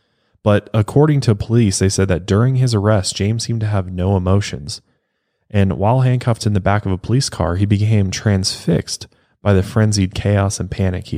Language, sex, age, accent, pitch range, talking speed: English, male, 20-39, American, 90-105 Hz, 195 wpm